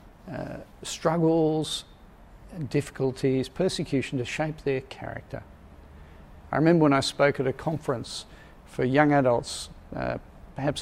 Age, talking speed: 50-69, 115 wpm